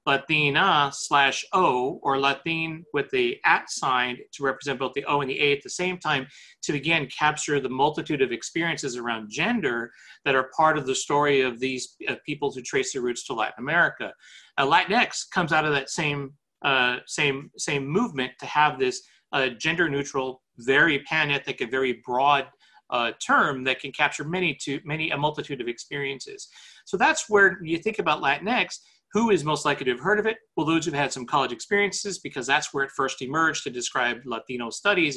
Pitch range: 130-165 Hz